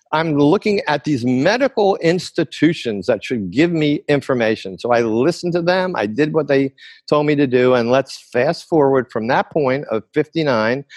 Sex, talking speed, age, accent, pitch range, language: male, 180 wpm, 50-69, American, 115-150 Hz, English